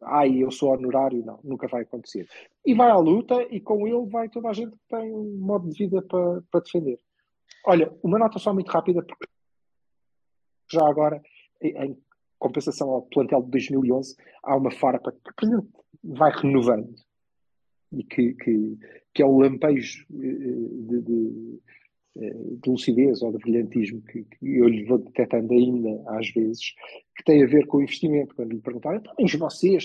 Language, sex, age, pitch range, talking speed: Portuguese, male, 50-69, 130-215 Hz, 175 wpm